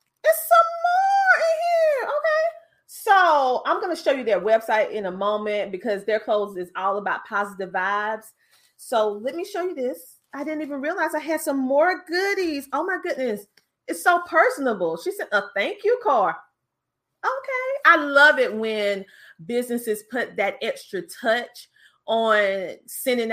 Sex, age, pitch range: female, 30-49, 190-290 Hz